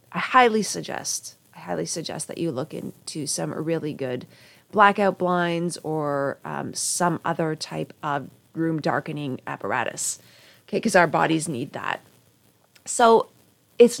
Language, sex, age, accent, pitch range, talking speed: English, female, 30-49, American, 170-215 Hz, 135 wpm